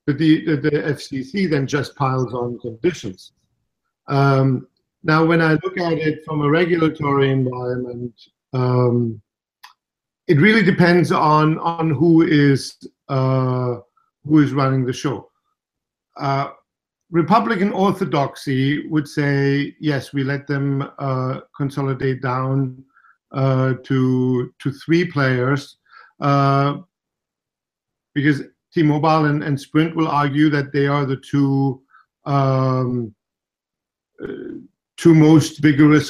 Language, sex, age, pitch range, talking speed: English, male, 50-69, 130-150 Hz, 110 wpm